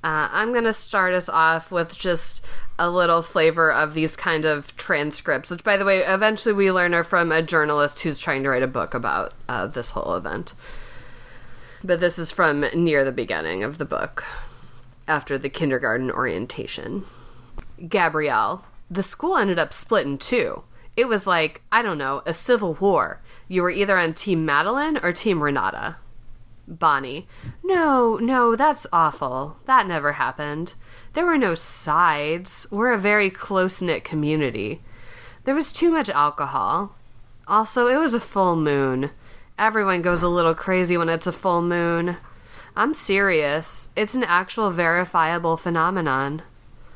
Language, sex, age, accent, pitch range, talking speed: English, female, 30-49, American, 145-200 Hz, 160 wpm